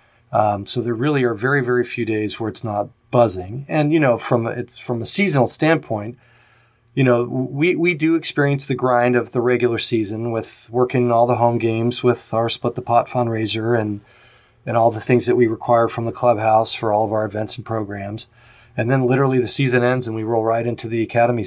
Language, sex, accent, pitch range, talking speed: English, male, American, 115-130 Hz, 220 wpm